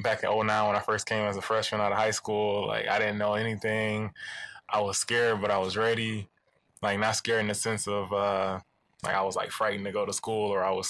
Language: English